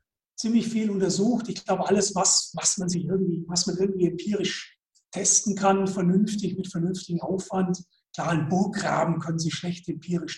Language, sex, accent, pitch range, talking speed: German, male, German, 165-195 Hz, 160 wpm